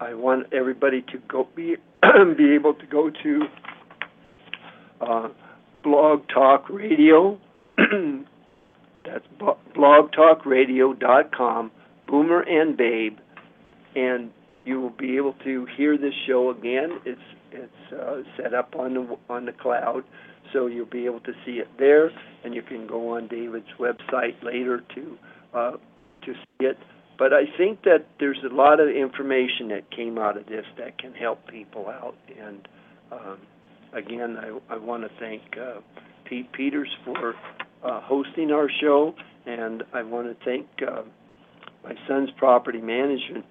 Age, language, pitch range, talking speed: 50-69, English, 120-145 Hz, 145 wpm